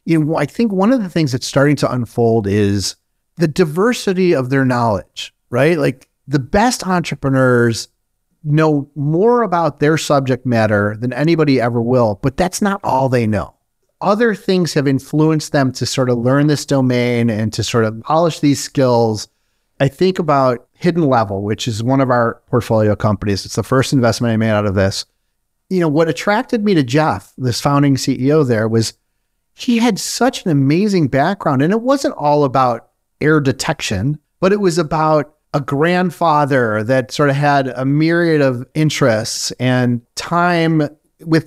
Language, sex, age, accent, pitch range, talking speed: English, male, 40-59, American, 125-170 Hz, 175 wpm